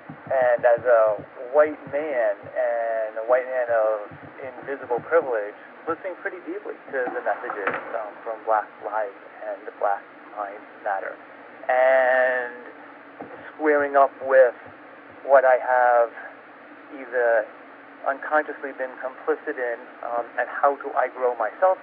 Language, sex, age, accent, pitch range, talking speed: English, male, 30-49, American, 125-155 Hz, 125 wpm